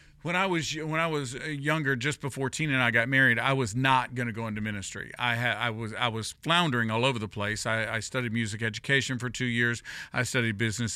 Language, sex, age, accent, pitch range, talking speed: English, male, 50-69, American, 115-145 Hz, 240 wpm